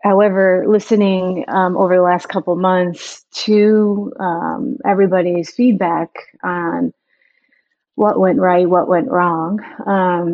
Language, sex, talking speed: English, female, 120 wpm